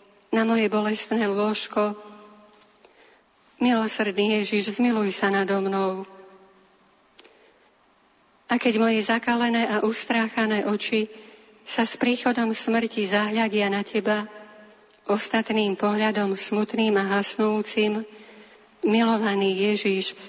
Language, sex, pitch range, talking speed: Slovak, female, 205-225 Hz, 90 wpm